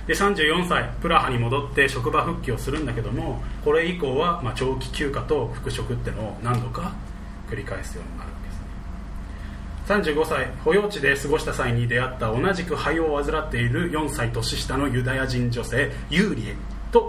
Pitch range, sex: 110-145 Hz, male